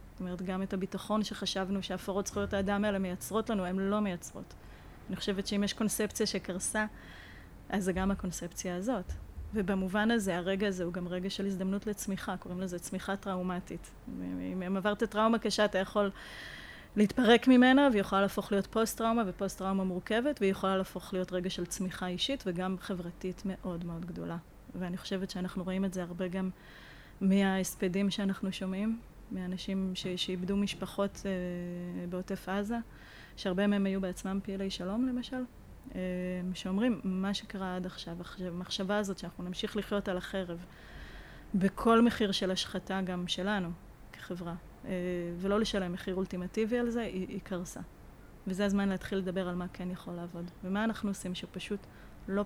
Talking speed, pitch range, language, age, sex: 145 wpm, 185-210 Hz, Hebrew, 30-49, female